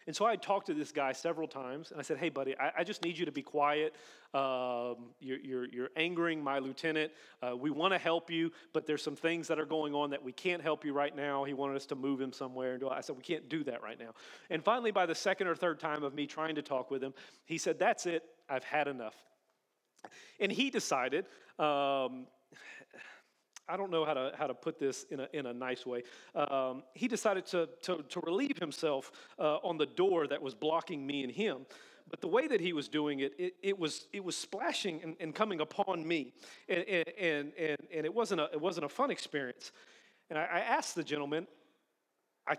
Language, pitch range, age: English, 140-170 Hz, 40-59